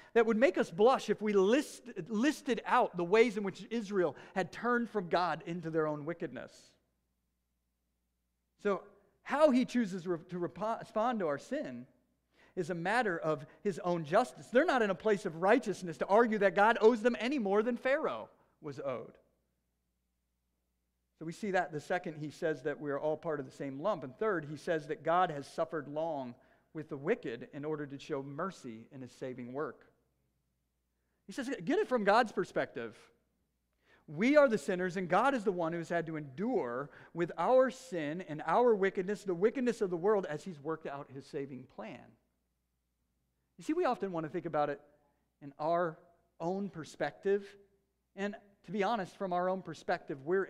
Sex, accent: male, American